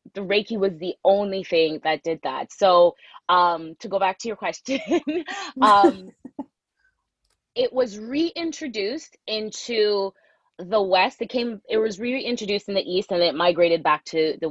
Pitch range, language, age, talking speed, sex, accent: 175-220 Hz, English, 20-39, 155 wpm, female, American